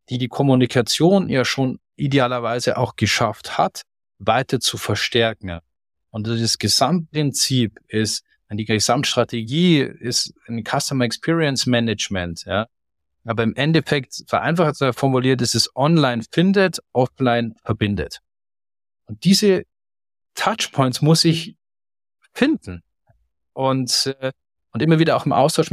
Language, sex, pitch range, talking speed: German, male, 110-135 Hz, 115 wpm